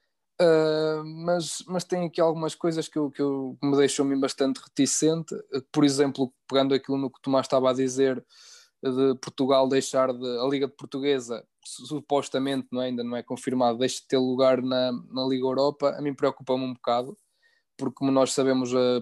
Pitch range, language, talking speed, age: 125-140 Hz, Portuguese, 185 wpm, 20-39